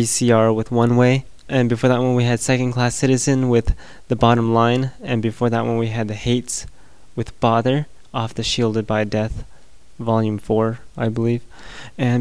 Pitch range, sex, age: 110-125 Hz, male, 20-39